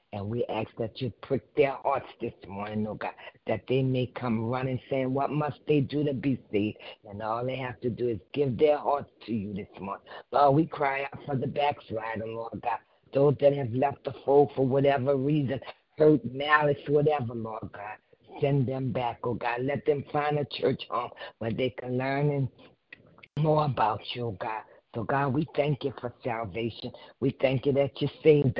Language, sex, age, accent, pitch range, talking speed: English, female, 50-69, American, 115-140 Hz, 195 wpm